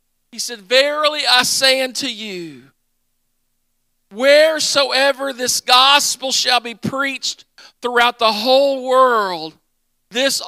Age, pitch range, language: 50-69, 230-275 Hz, English